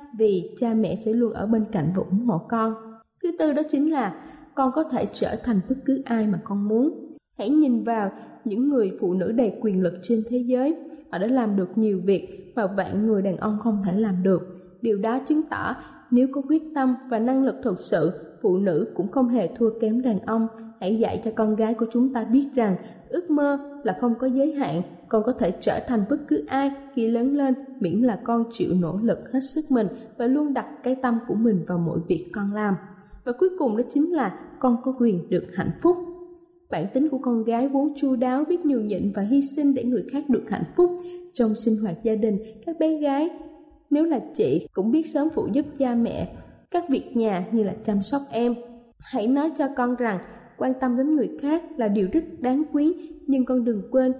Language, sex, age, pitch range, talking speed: Vietnamese, female, 20-39, 215-280 Hz, 225 wpm